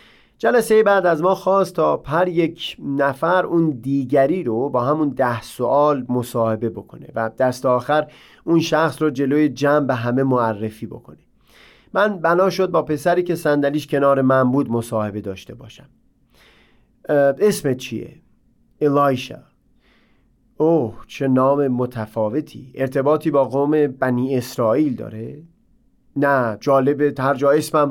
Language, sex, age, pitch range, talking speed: Persian, male, 30-49, 125-160 Hz, 130 wpm